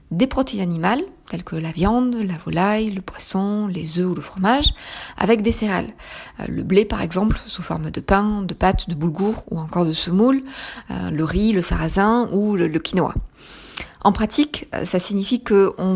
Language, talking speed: French, 180 wpm